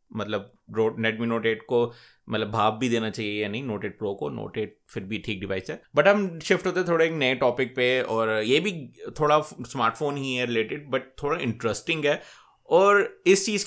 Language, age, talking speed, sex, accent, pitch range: Hindi, 20-39, 200 wpm, male, native, 120-150 Hz